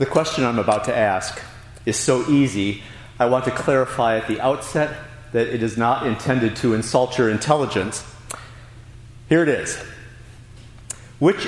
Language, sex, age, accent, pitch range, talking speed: English, male, 40-59, American, 115-135 Hz, 150 wpm